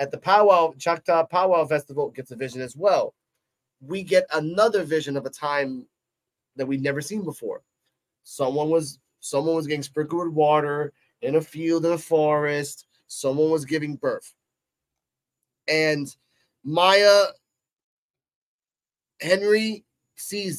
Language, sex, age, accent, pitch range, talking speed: English, male, 30-49, American, 140-175 Hz, 130 wpm